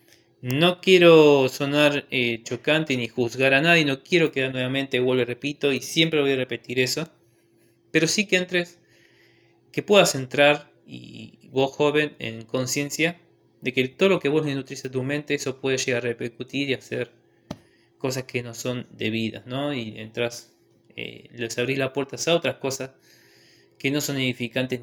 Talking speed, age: 170 wpm, 20-39